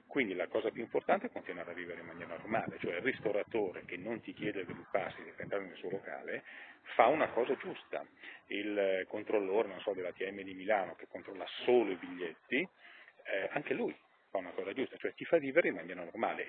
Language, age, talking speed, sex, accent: Italian, 40-59, 210 wpm, male, native